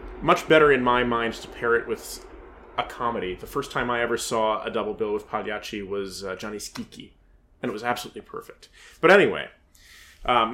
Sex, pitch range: male, 105-135 Hz